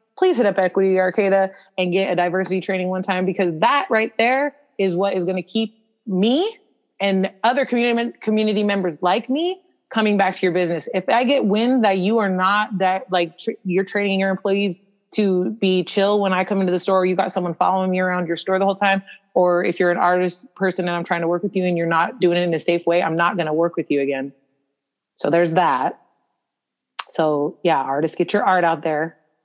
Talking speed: 230 wpm